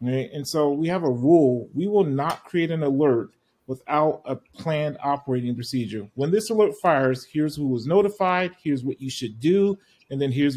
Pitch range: 130-160 Hz